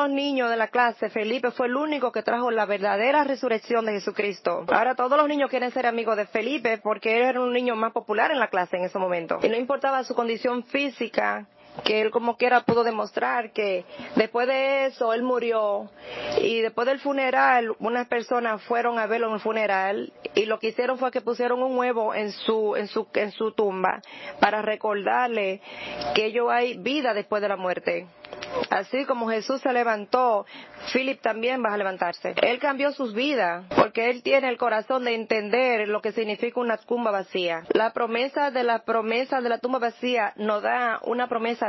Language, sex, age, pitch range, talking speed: English, female, 30-49, 215-255 Hz, 190 wpm